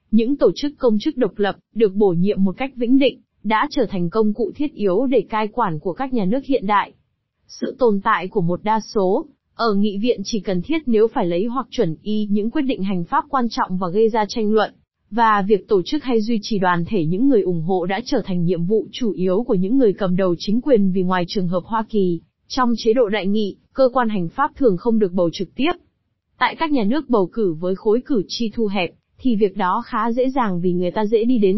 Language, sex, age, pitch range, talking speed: Vietnamese, female, 20-39, 195-250 Hz, 255 wpm